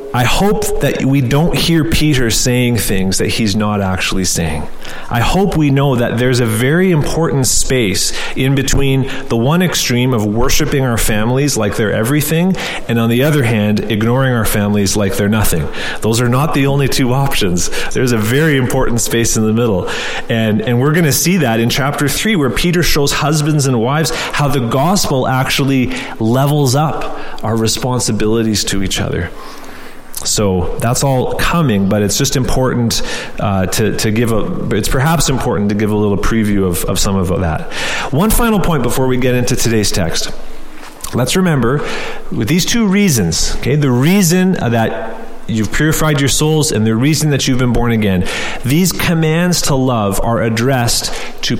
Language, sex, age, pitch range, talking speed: English, male, 30-49, 110-145 Hz, 180 wpm